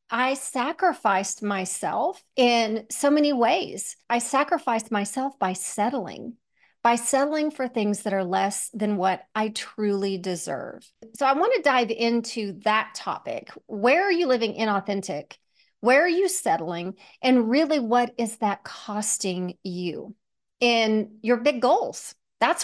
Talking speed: 140 wpm